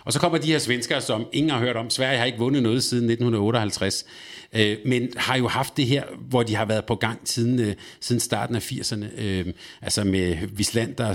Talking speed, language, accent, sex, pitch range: 220 wpm, Danish, native, male, 105-125 Hz